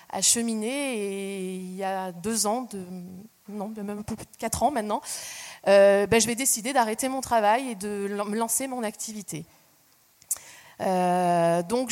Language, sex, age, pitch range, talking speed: French, female, 20-39, 195-240 Hz, 160 wpm